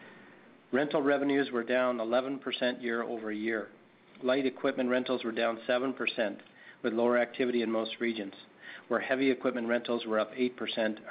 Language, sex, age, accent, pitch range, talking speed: English, male, 40-59, American, 110-130 Hz, 135 wpm